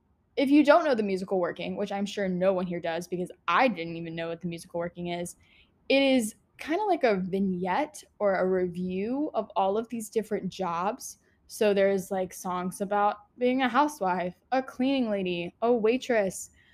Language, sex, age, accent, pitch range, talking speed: English, female, 10-29, American, 190-245 Hz, 190 wpm